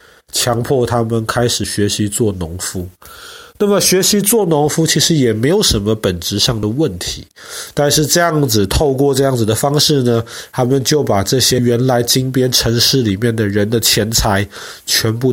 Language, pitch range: Chinese, 110-150 Hz